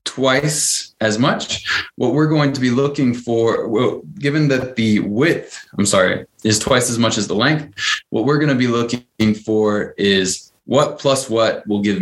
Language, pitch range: English, 105-130 Hz